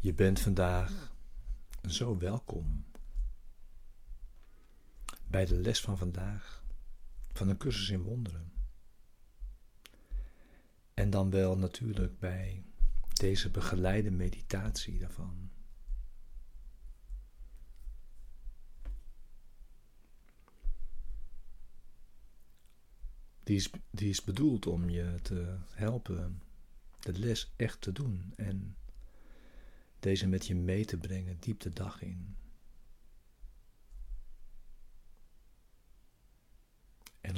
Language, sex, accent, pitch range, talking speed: Dutch, male, Dutch, 90-105 Hz, 80 wpm